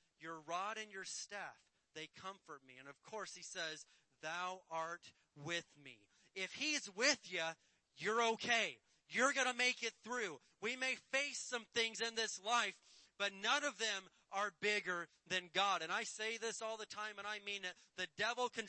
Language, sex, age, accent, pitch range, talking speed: English, male, 30-49, American, 165-225 Hz, 190 wpm